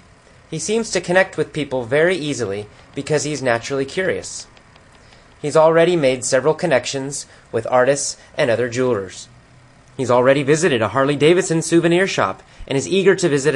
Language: English